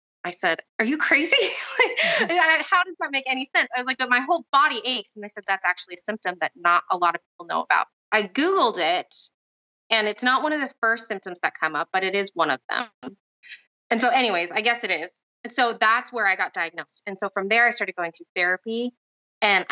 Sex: female